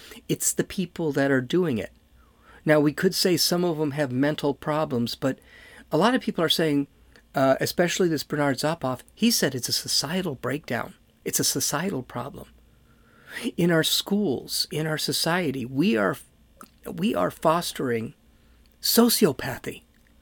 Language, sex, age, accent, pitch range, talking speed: English, male, 50-69, American, 145-205 Hz, 150 wpm